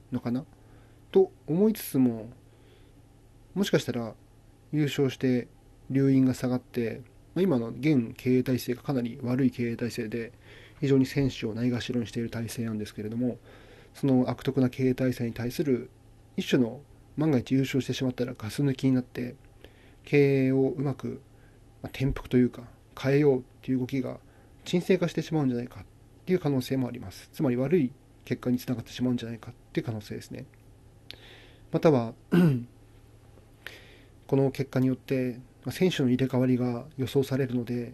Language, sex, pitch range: Japanese, male, 115-135 Hz